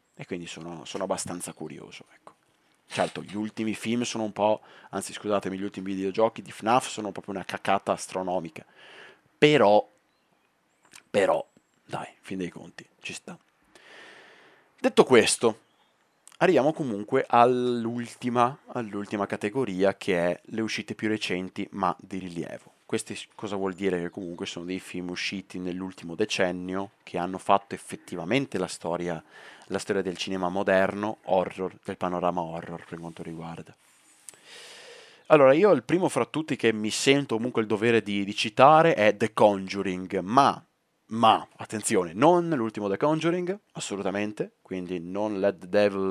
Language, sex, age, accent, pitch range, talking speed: Italian, male, 30-49, native, 95-120 Hz, 145 wpm